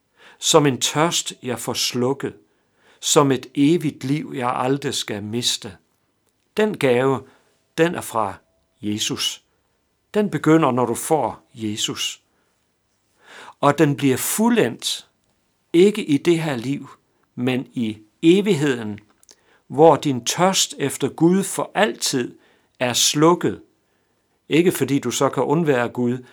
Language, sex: Danish, male